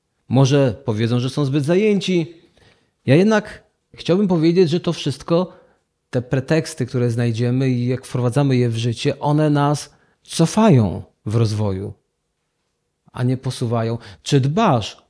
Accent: native